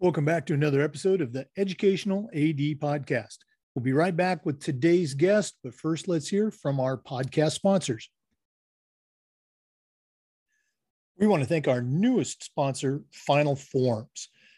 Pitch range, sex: 130-180 Hz, male